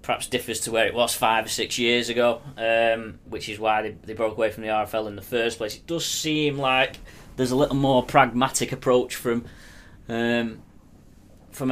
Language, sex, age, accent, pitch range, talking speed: English, male, 20-39, British, 110-125 Hz, 200 wpm